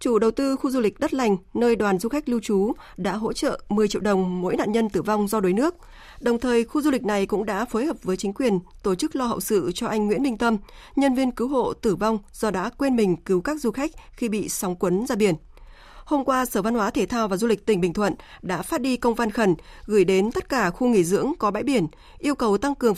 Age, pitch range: 20-39, 200-255 Hz